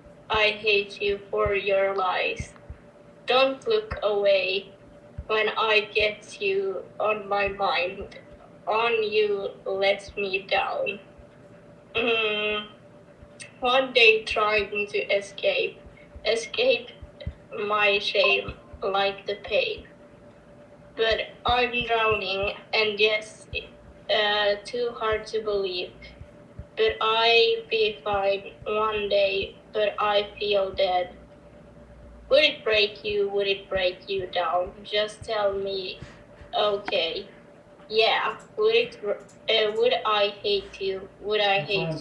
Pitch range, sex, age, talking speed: 200-230 Hz, female, 20-39, 110 wpm